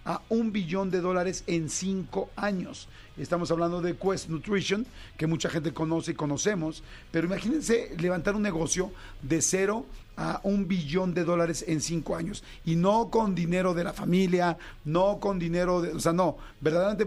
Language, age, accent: Spanish, 50-69, Mexican